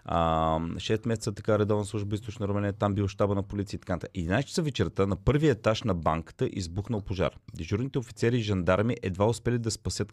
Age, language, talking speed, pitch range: 30-49, Bulgarian, 190 wpm, 105-145 Hz